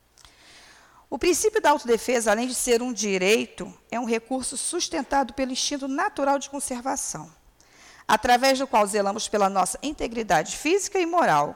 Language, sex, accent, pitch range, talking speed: Portuguese, female, Brazilian, 175-250 Hz, 145 wpm